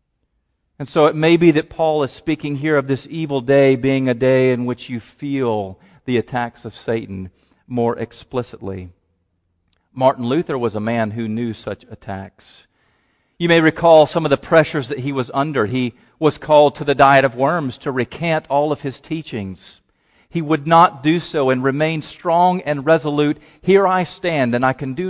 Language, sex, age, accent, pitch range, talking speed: English, male, 40-59, American, 115-160 Hz, 185 wpm